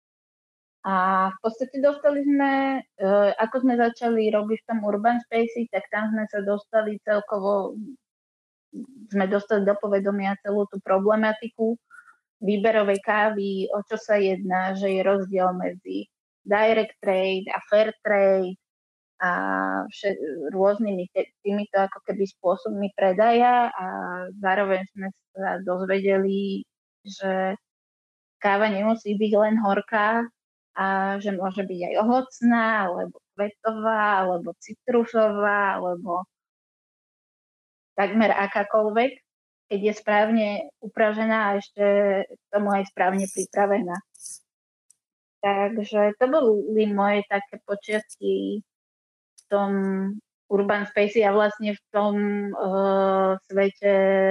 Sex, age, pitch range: female, 20-39, 195-215 Hz